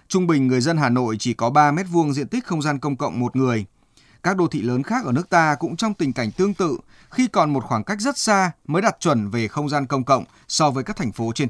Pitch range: 130-185 Hz